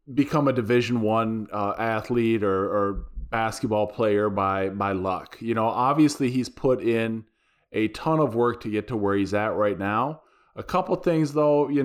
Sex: male